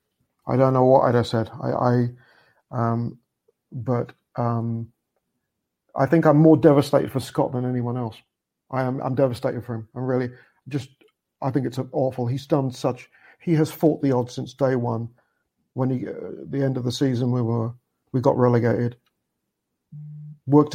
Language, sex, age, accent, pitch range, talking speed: English, male, 50-69, British, 120-135 Hz, 175 wpm